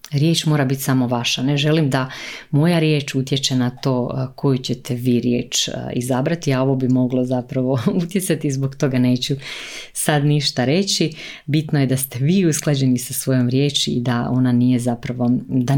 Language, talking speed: Croatian, 170 wpm